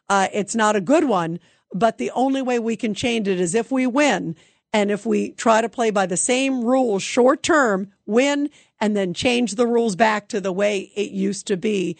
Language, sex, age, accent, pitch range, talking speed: English, female, 50-69, American, 205-260 Hz, 220 wpm